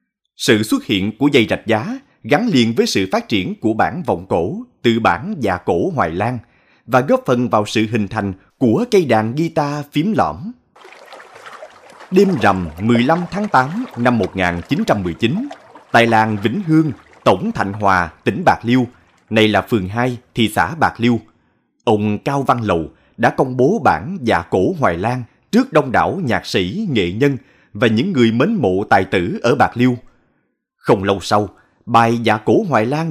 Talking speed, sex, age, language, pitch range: 180 wpm, male, 20-39, Vietnamese, 105-140 Hz